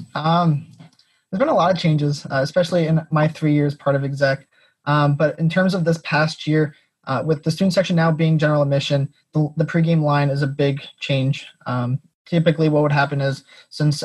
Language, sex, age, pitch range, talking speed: English, male, 20-39, 140-155 Hz, 205 wpm